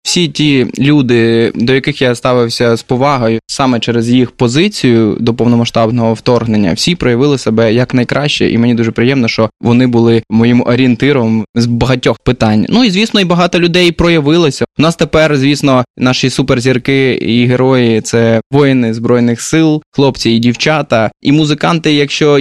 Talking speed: 155 wpm